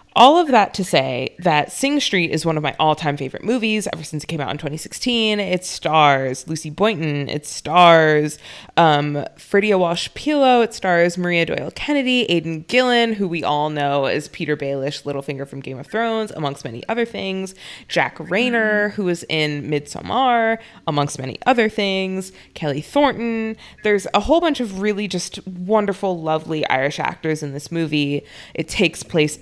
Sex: female